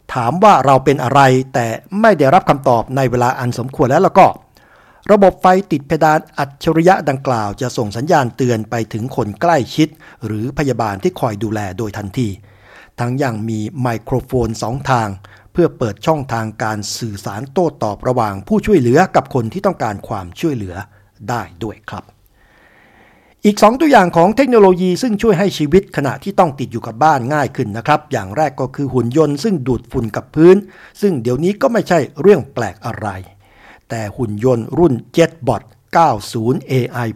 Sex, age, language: male, 60-79, Thai